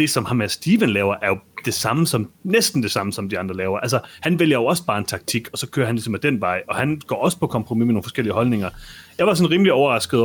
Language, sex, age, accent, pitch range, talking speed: Danish, male, 30-49, native, 100-130 Hz, 285 wpm